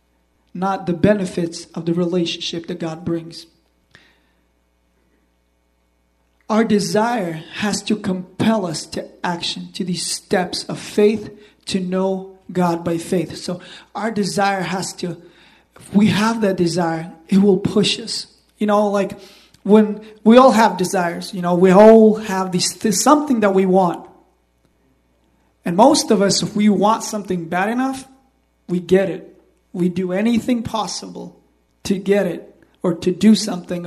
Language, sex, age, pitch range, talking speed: English, male, 20-39, 165-205 Hz, 145 wpm